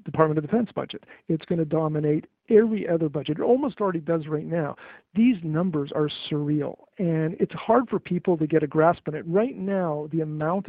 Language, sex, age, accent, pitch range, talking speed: English, male, 50-69, American, 155-190 Hz, 200 wpm